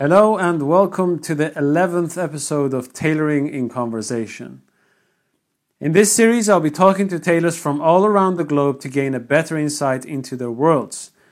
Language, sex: English, male